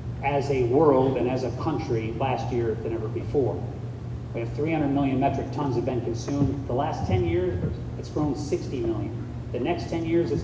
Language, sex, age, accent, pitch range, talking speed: English, male, 40-59, American, 115-135 Hz, 195 wpm